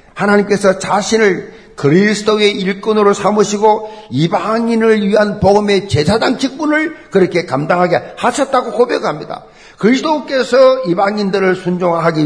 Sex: male